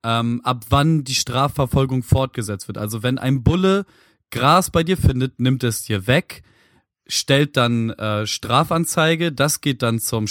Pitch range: 120-150 Hz